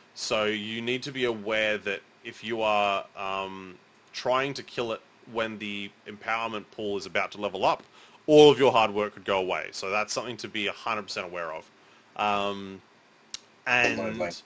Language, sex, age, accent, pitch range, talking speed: English, male, 20-39, Australian, 105-130 Hz, 175 wpm